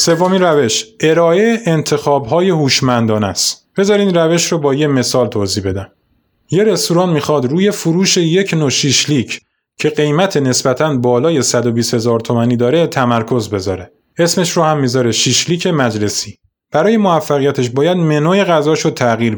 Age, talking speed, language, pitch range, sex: 20-39, 140 wpm, Persian, 120-165 Hz, male